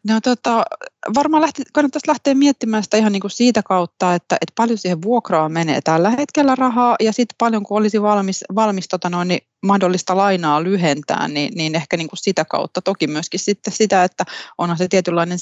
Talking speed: 190 wpm